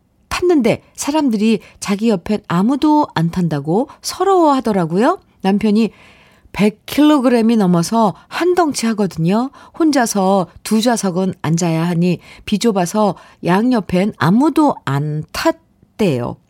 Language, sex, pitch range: Korean, female, 180-255 Hz